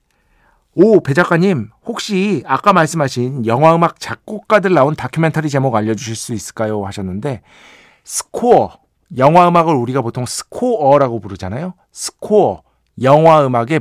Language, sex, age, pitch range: Korean, male, 50-69, 115-155 Hz